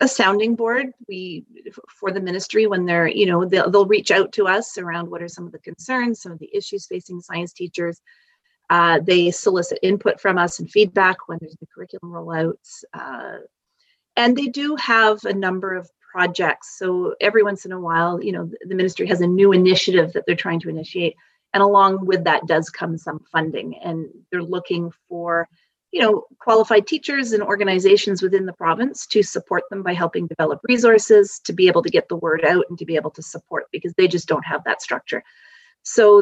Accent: American